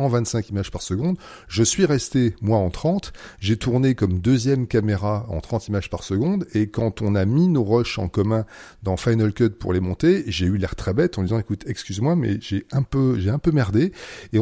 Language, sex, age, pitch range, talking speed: French, male, 40-59, 100-130 Hz, 225 wpm